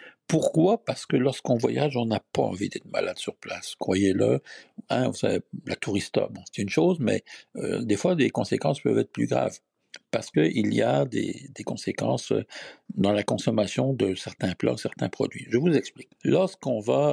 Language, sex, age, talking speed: French, male, 60-79, 175 wpm